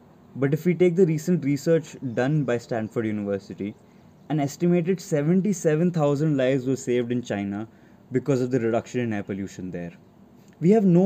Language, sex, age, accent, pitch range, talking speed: English, male, 20-39, Indian, 120-170 Hz, 165 wpm